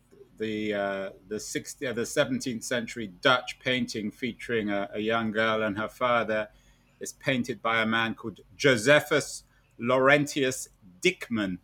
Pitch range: 110-135 Hz